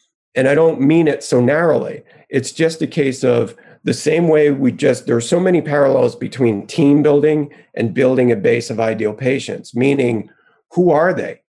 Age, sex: 40-59, male